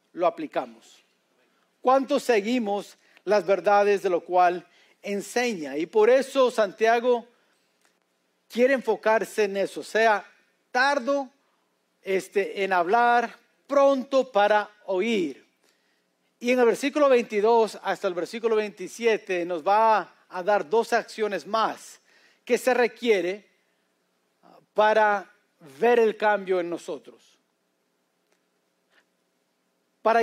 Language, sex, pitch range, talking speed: English, male, 170-235 Hz, 105 wpm